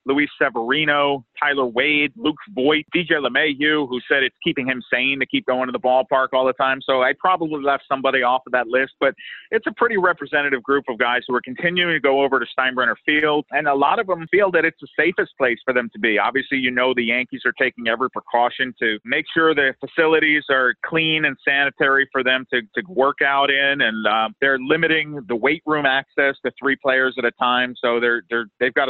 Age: 40-59